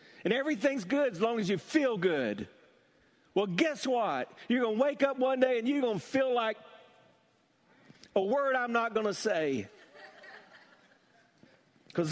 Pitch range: 140-205 Hz